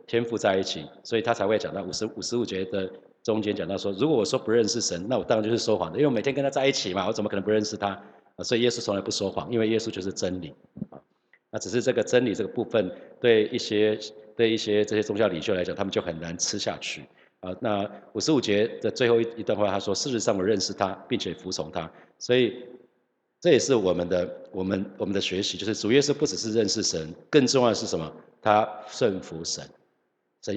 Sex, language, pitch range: male, Chinese, 100-120 Hz